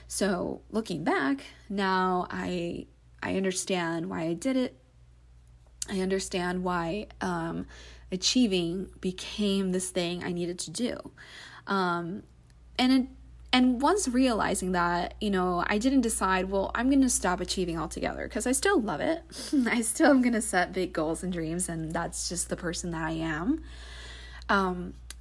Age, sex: 20-39, female